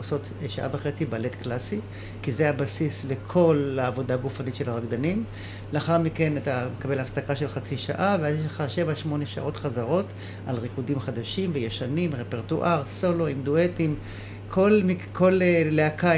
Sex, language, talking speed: male, Hebrew, 135 wpm